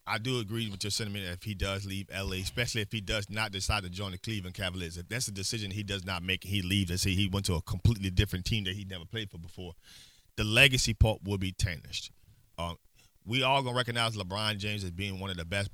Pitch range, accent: 95-125 Hz, American